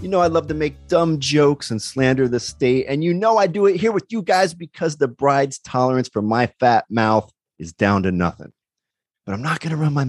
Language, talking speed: English, 245 wpm